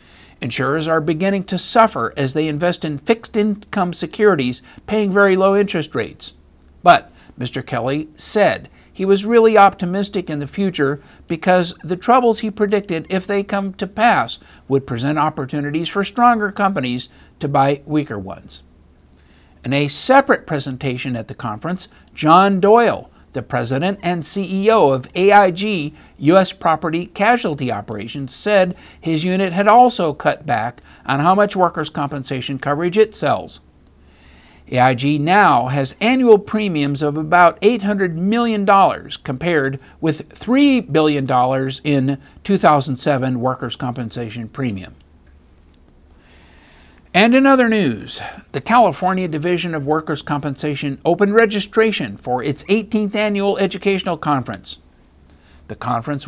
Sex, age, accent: male, 60-79, American